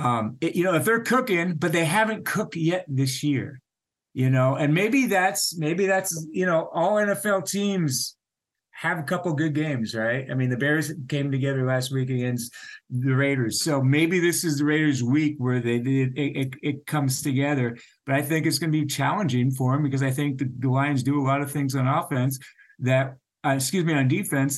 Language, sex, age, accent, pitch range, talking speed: English, male, 50-69, American, 130-160 Hz, 210 wpm